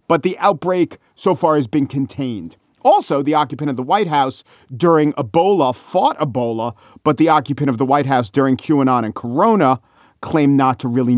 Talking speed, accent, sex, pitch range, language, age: 180 wpm, American, male, 130-190 Hz, English, 40-59